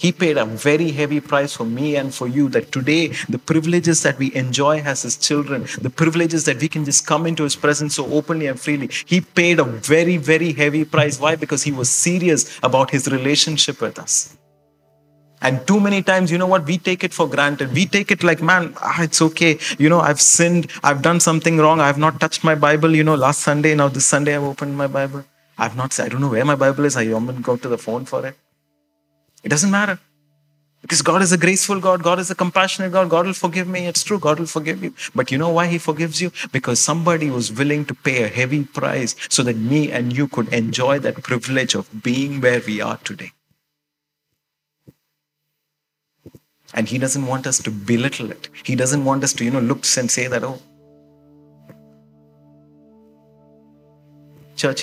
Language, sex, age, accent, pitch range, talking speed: English, male, 30-49, Indian, 125-160 Hz, 210 wpm